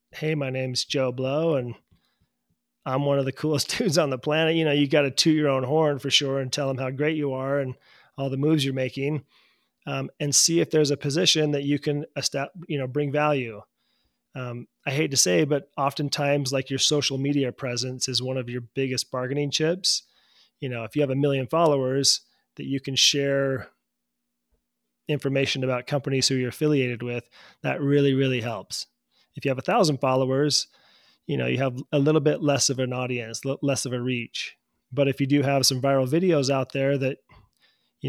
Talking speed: 200 wpm